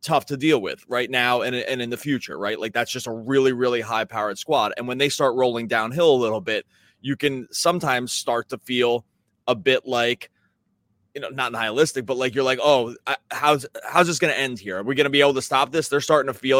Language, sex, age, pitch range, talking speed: English, male, 20-39, 125-150 Hz, 245 wpm